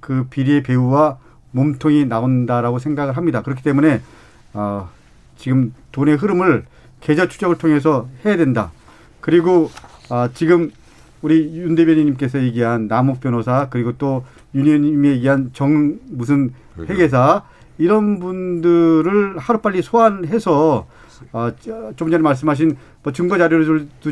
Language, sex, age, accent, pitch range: Korean, male, 40-59, native, 130-180 Hz